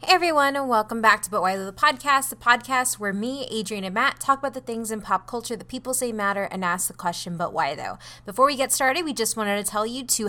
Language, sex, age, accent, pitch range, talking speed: English, female, 20-39, American, 190-255 Hz, 275 wpm